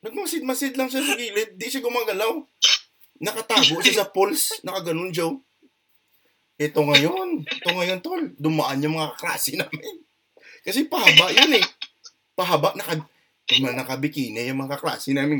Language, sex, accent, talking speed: Filipino, male, native, 155 wpm